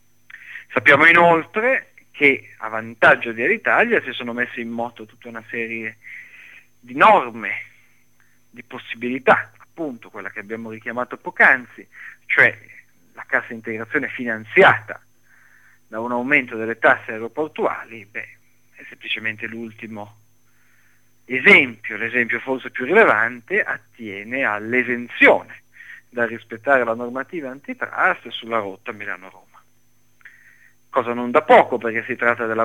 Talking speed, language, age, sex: 120 wpm, Italian, 40-59, male